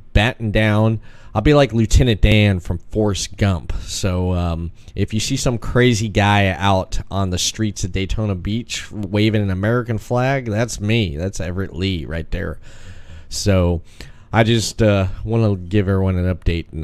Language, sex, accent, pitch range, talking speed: English, male, American, 85-110 Hz, 160 wpm